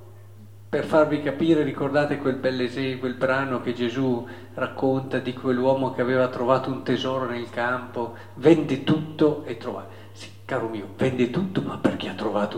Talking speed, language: 160 wpm, Italian